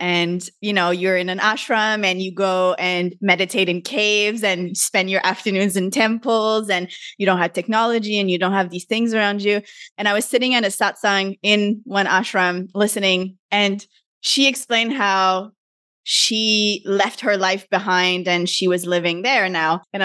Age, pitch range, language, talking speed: 20-39, 185-225 Hz, English, 180 wpm